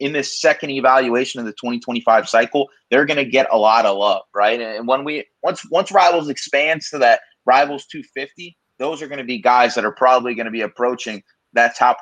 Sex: male